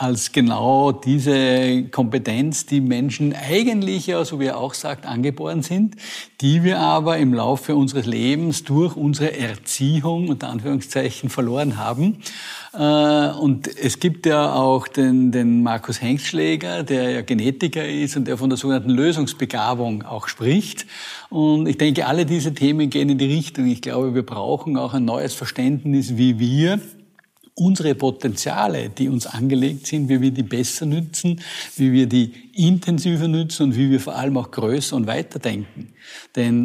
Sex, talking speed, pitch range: male, 160 wpm, 125-150 Hz